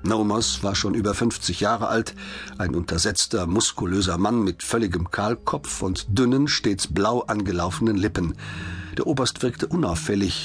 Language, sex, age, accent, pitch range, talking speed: German, male, 50-69, German, 90-120 Hz, 140 wpm